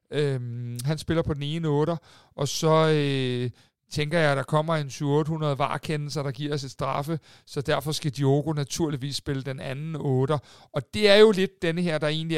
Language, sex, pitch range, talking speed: Danish, male, 145-175 Hz, 200 wpm